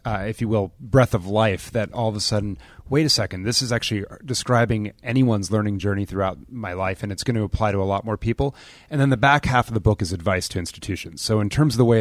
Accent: American